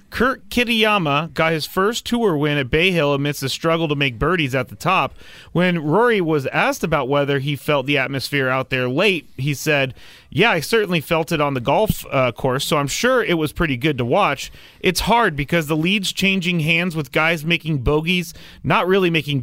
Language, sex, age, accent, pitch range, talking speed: English, male, 30-49, American, 135-180 Hz, 205 wpm